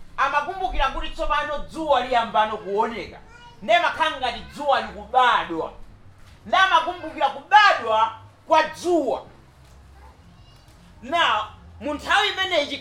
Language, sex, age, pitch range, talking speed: English, male, 40-59, 230-340 Hz, 90 wpm